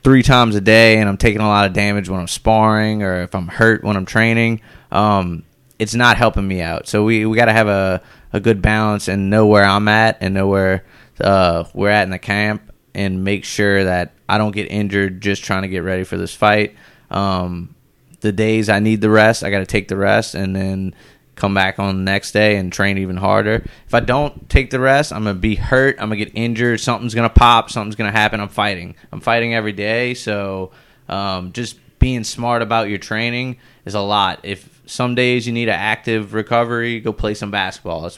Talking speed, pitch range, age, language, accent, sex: 220 wpm, 95-115 Hz, 20-39, English, American, male